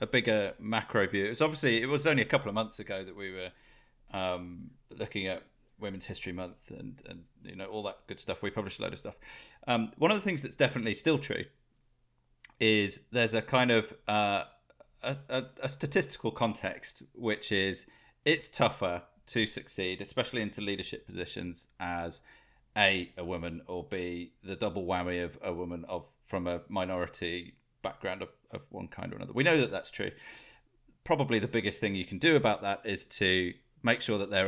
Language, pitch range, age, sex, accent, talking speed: English, 95-120 Hz, 30-49, male, British, 190 wpm